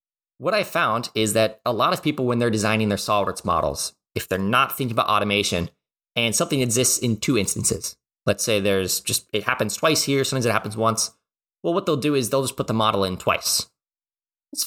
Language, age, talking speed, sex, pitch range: English, 20-39, 215 wpm, male, 105-135 Hz